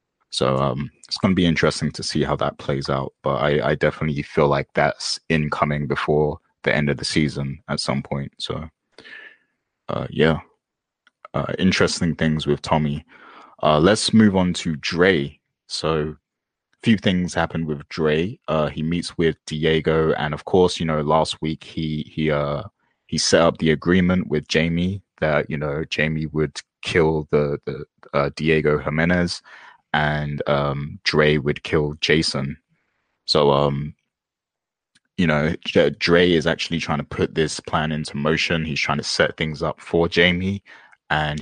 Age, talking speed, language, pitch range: 20-39, 160 wpm, English, 75-85 Hz